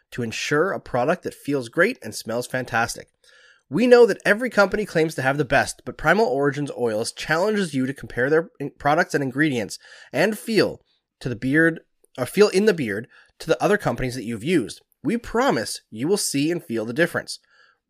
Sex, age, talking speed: male, 20-39, 195 wpm